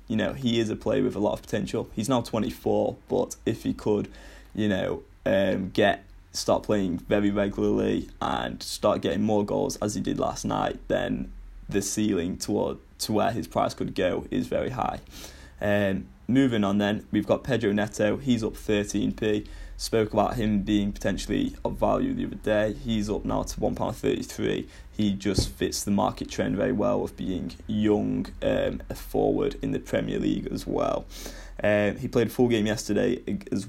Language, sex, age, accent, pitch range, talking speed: English, male, 10-29, British, 95-110 Hz, 190 wpm